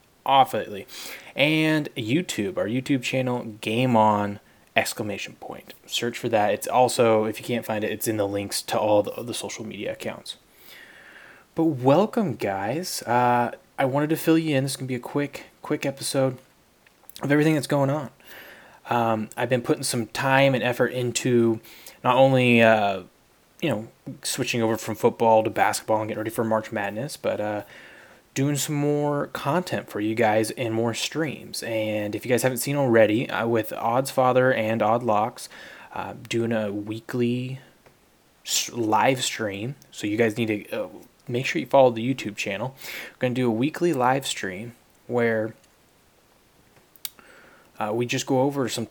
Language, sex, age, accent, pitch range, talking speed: English, male, 20-39, American, 110-135 Hz, 170 wpm